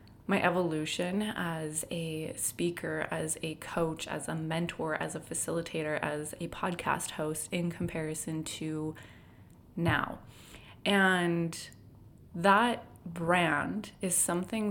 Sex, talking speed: female, 110 wpm